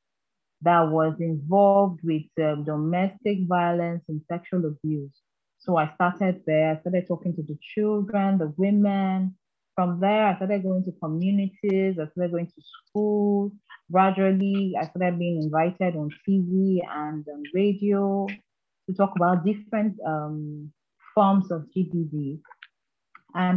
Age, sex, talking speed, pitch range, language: 30-49, female, 135 wpm, 155-195 Hz, English